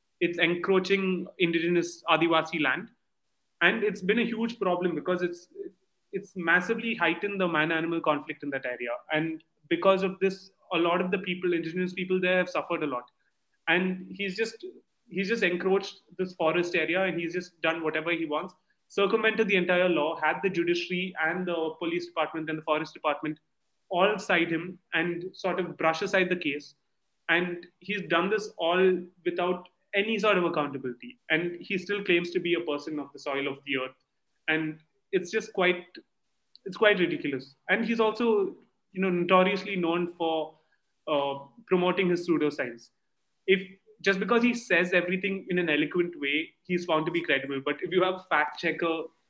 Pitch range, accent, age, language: 160-190 Hz, Indian, 30-49, English